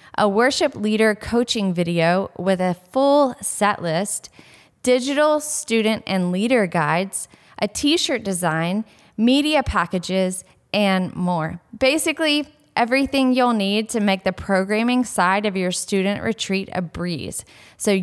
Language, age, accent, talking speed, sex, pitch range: English, 10-29, American, 125 wpm, female, 180-240 Hz